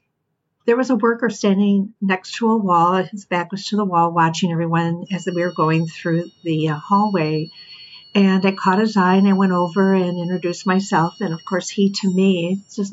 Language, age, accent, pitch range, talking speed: English, 50-69, American, 180-210 Hz, 200 wpm